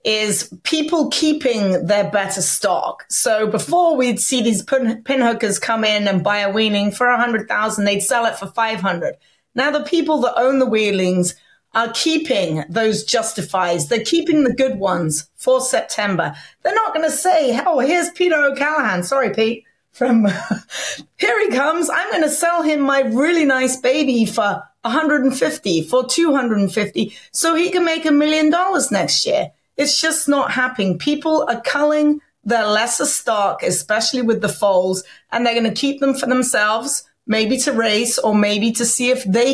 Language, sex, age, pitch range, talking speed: English, female, 30-49, 210-290 Hz, 175 wpm